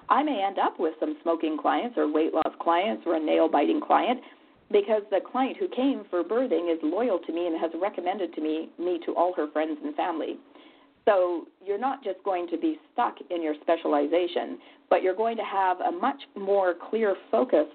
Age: 40-59